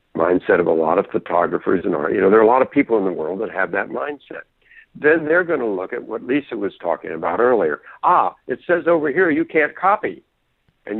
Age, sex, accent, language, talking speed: 60-79, male, American, English, 240 wpm